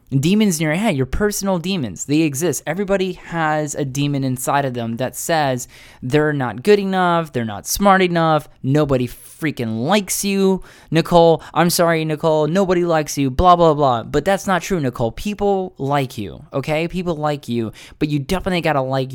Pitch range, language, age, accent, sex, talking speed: 125-165 Hz, English, 20-39, American, male, 175 wpm